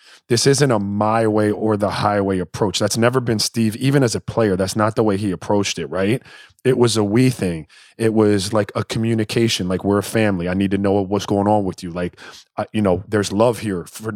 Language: English